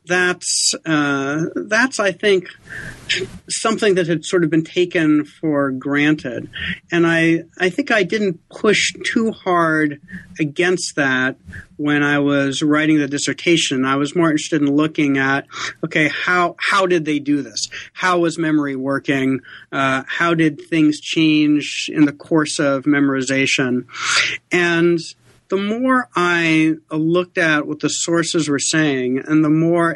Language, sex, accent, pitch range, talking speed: English, male, American, 140-175 Hz, 145 wpm